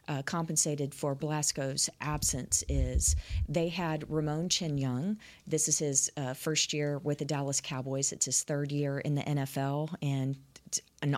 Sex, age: female, 40-59